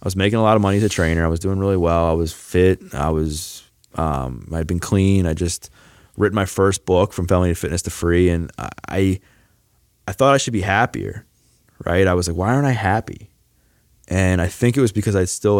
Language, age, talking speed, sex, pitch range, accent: English, 20-39, 230 wpm, male, 85-105 Hz, American